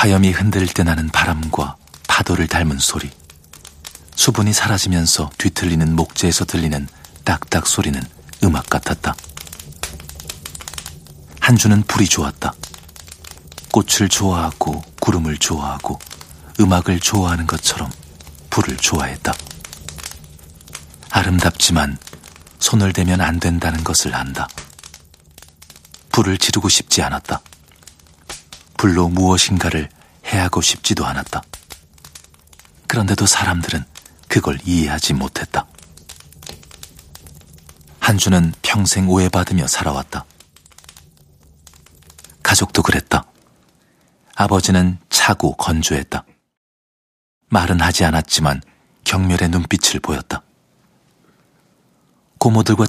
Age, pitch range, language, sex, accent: 40-59, 75-90 Hz, Korean, male, native